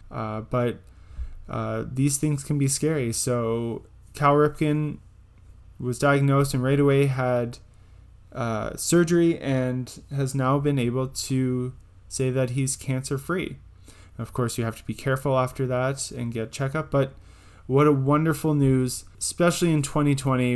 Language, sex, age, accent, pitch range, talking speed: English, male, 20-39, American, 110-140 Hz, 145 wpm